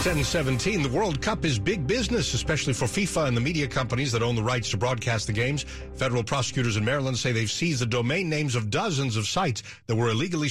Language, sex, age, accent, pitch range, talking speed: English, male, 50-69, American, 110-135 Hz, 225 wpm